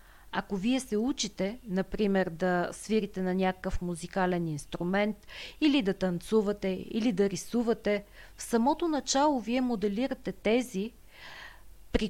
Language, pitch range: Bulgarian, 180-235 Hz